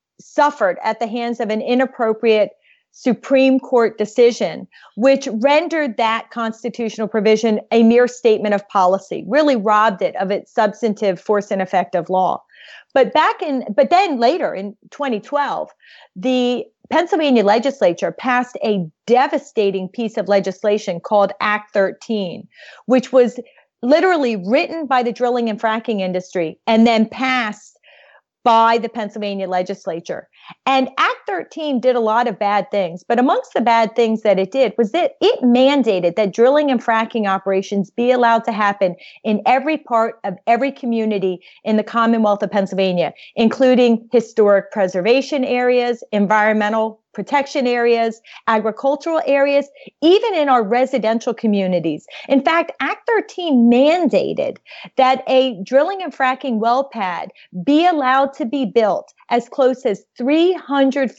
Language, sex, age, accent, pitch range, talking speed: English, female, 30-49, American, 210-265 Hz, 140 wpm